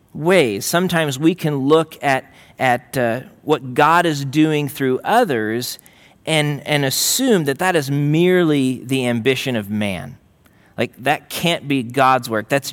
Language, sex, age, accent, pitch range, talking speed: English, male, 40-59, American, 115-145 Hz, 150 wpm